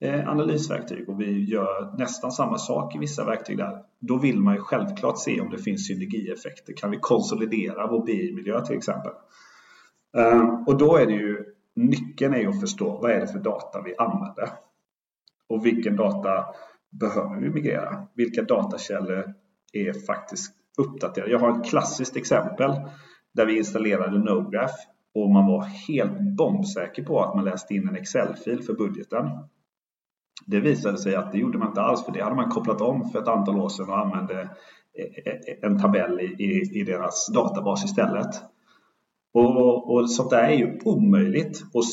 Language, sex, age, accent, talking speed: English, male, 30-49, Swedish, 165 wpm